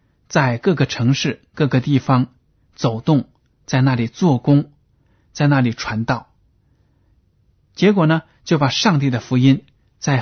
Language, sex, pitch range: Chinese, male, 115-140 Hz